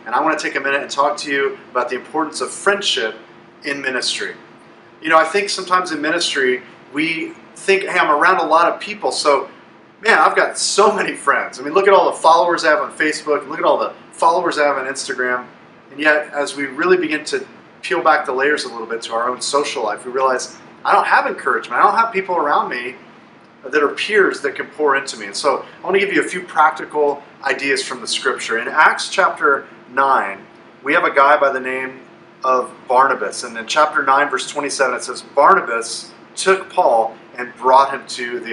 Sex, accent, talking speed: male, American, 225 wpm